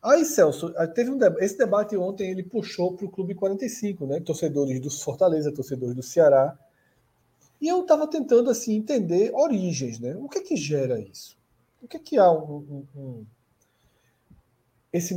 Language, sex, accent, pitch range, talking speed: Portuguese, male, Brazilian, 135-205 Hz, 165 wpm